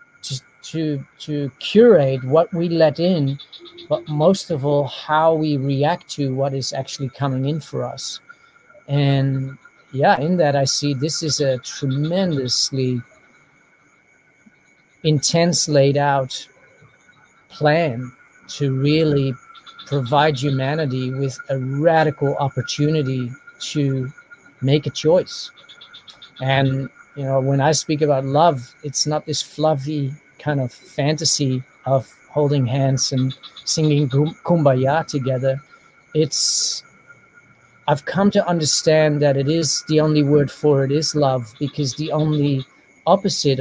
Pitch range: 135-155 Hz